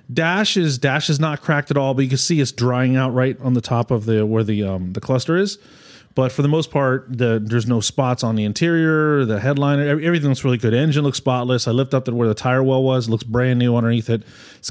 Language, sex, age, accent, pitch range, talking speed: English, male, 30-49, American, 115-145 Hz, 255 wpm